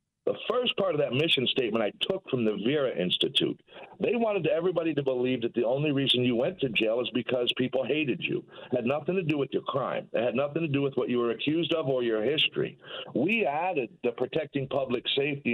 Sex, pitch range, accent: male, 125-165 Hz, American